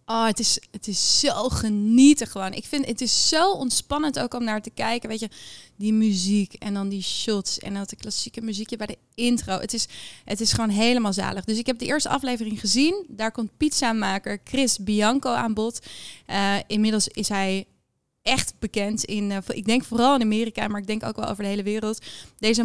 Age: 20-39